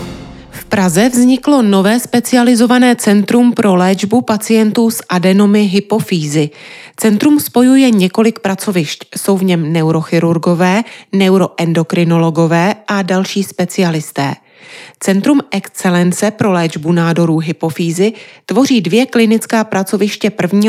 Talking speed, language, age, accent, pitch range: 100 wpm, Czech, 30-49, native, 175-220 Hz